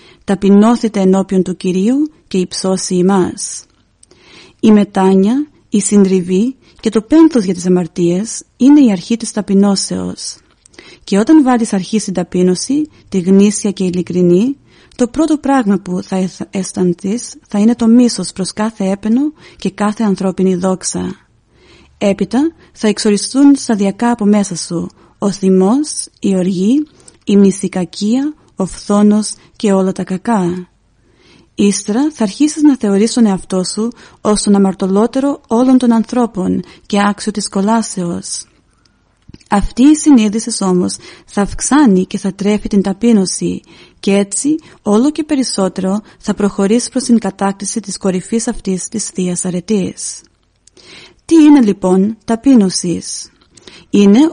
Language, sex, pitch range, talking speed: Greek, female, 190-235 Hz, 130 wpm